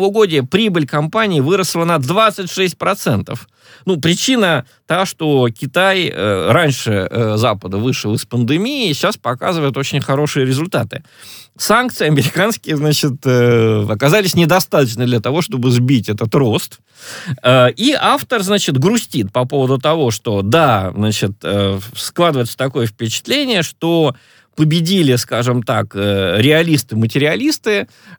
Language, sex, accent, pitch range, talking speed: Russian, male, native, 115-175 Hz, 120 wpm